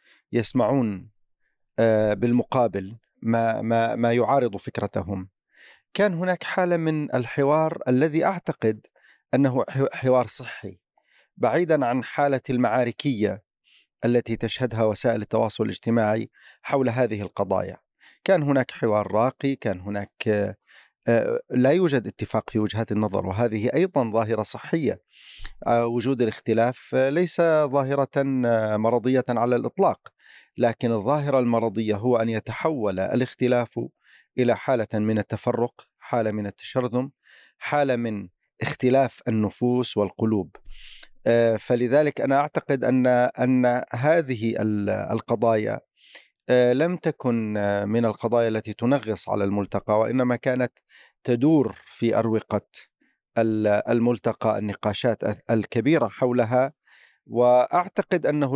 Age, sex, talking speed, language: 40-59, male, 95 wpm, Arabic